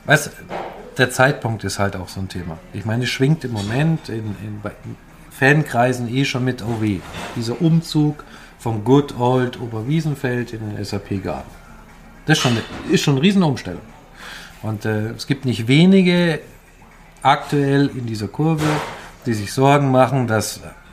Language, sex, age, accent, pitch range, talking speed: German, male, 40-59, German, 105-140 Hz, 155 wpm